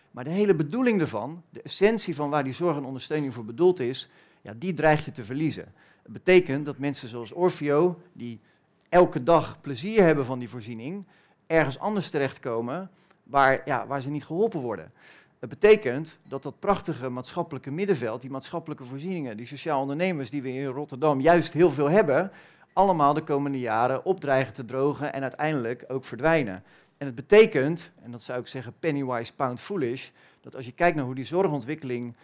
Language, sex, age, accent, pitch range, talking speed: Dutch, male, 40-59, Dutch, 125-165 Hz, 175 wpm